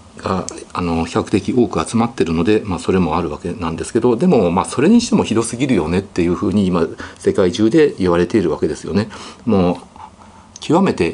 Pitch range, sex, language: 85-120 Hz, male, Japanese